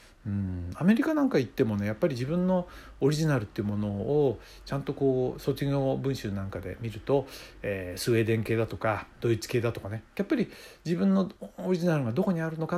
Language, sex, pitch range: Japanese, male, 110-160 Hz